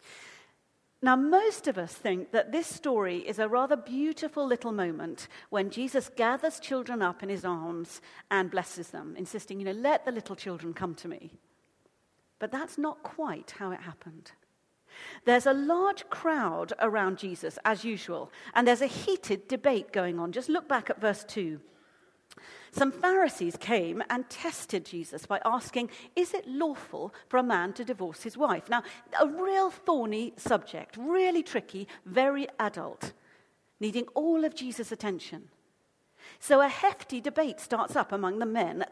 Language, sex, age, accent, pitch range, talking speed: English, female, 50-69, British, 195-295 Hz, 160 wpm